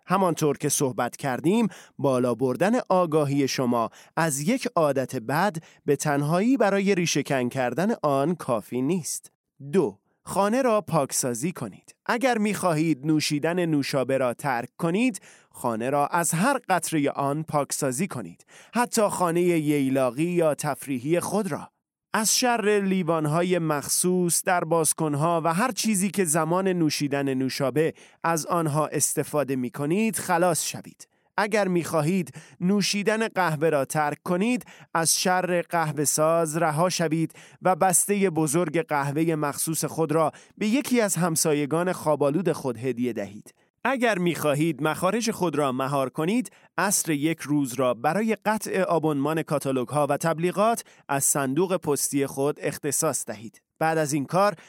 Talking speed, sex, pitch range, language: 135 wpm, male, 145-185 Hz, Persian